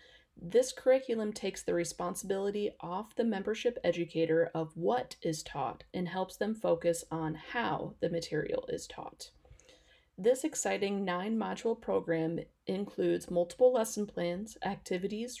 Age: 30-49